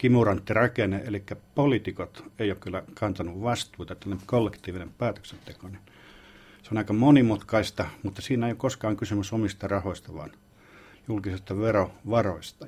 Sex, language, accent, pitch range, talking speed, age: male, Finnish, native, 100-125 Hz, 125 wpm, 50-69